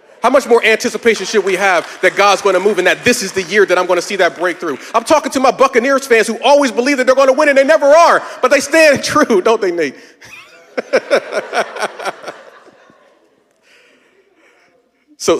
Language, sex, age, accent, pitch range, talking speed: English, male, 40-59, American, 150-245 Hz, 200 wpm